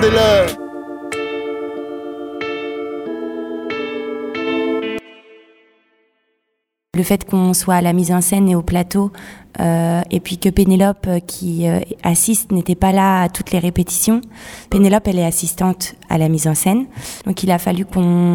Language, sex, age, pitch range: French, female, 20-39, 165-195 Hz